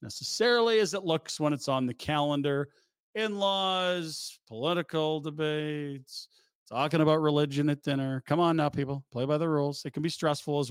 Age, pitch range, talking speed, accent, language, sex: 40-59, 130-160 Hz, 170 wpm, American, English, male